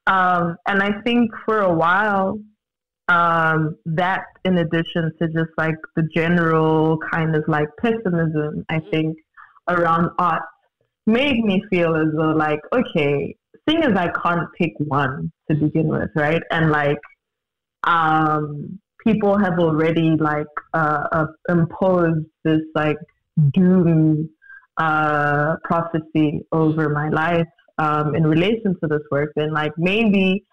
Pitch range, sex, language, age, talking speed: 155-180 Hz, female, English, 20-39, 135 wpm